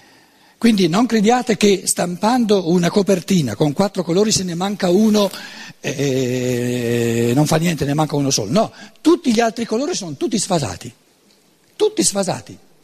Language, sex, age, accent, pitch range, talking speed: Italian, male, 60-79, native, 135-195 Hz, 150 wpm